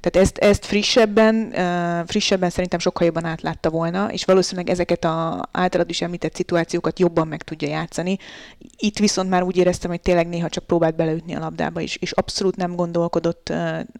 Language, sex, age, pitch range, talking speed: Hungarian, female, 20-39, 160-190 Hz, 170 wpm